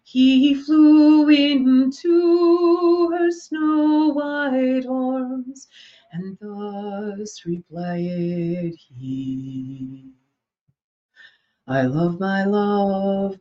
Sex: female